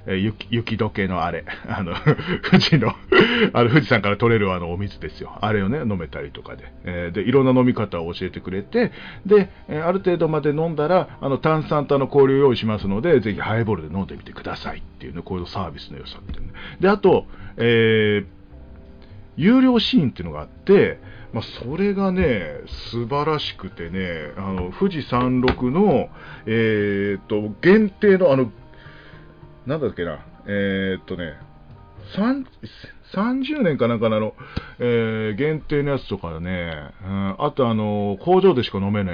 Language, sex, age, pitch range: Japanese, male, 40-59, 95-155 Hz